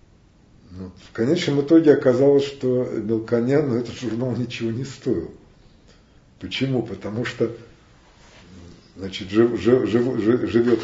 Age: 50-69